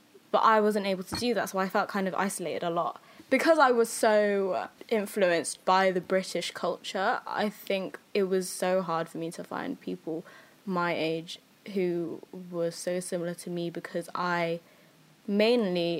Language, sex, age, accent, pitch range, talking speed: English, female, 10-29, British, 175-210 Hz, 175 wpm